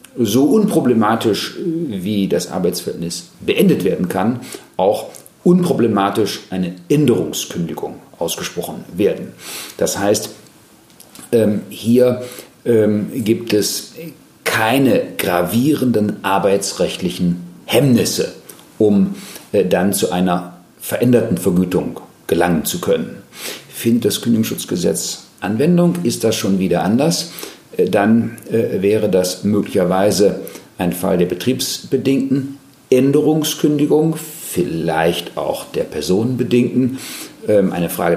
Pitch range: 90-130 Hz